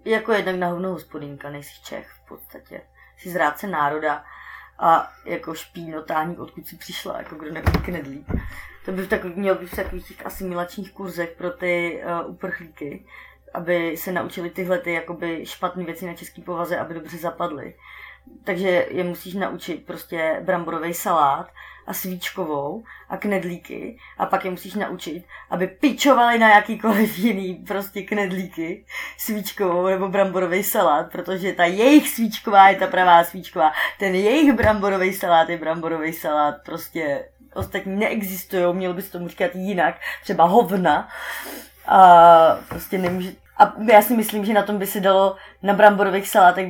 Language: Czech